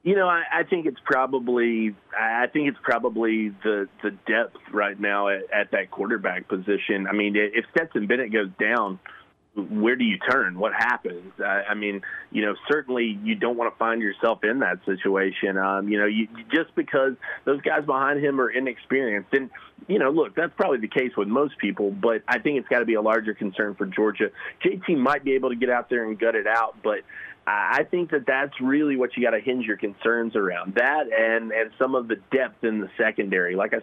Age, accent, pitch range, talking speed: 30-49, American, 105-130 Hz, 215 wpm